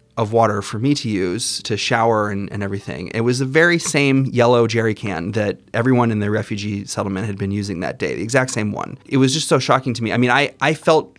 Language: English